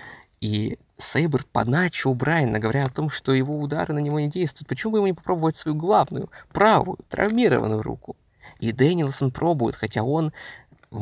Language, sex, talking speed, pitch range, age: Russian, male, 165 wpm, 115-145 Hz, 20-39